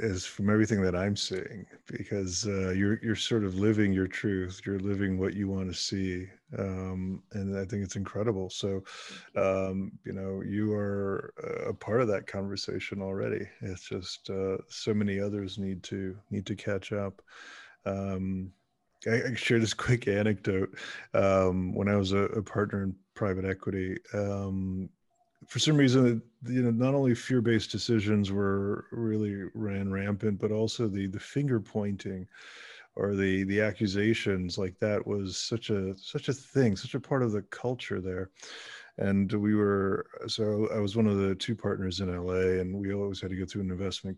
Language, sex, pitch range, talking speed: English, male, 95-110 Hz, 180 wpm